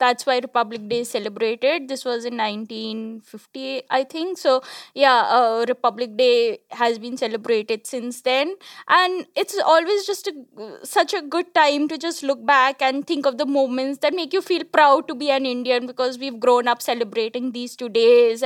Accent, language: Indian, English